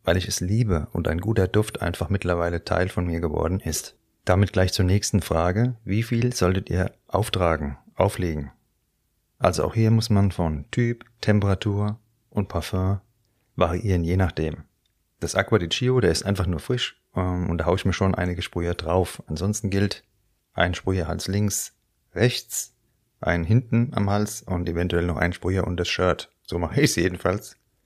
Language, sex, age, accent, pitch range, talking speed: German, male, 30-49, German, 90-110 Hz, 170 wpm